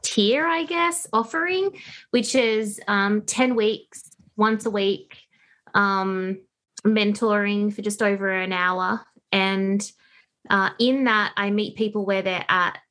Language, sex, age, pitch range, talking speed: English, female, 20-39, 195-230 Hz, 135 wpm